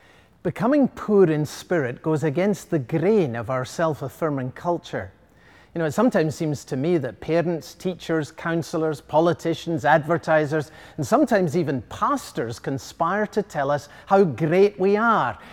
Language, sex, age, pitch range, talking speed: English, male, 40-59, 135-190 Hz, 145 wpm